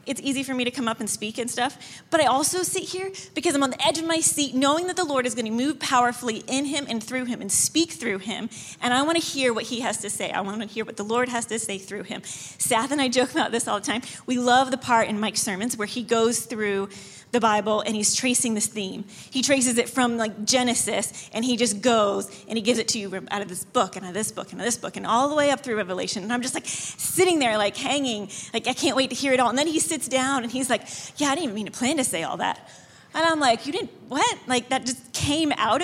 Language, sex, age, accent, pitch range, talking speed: English, female, 30-49, American, 225-305 Hz, 290 wpm